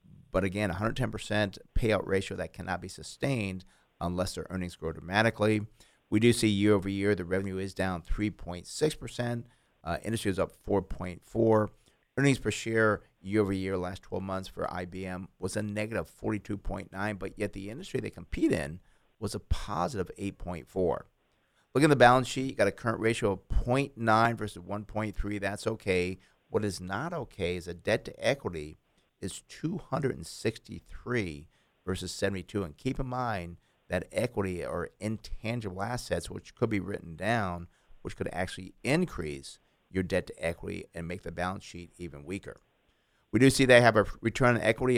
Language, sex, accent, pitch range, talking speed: English, male, American, 90-115 Hz, 165 wpm